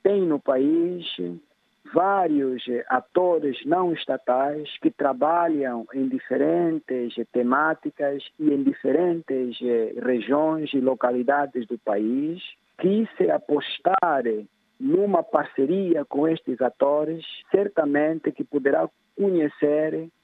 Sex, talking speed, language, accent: male, 95 wpm, Portuguese, Brazilian